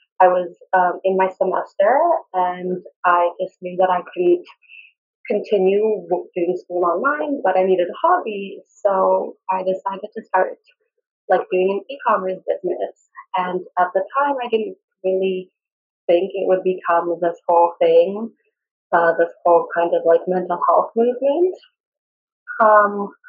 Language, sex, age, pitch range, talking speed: English, female, 20-39, 175-240 Hz, 145 wpm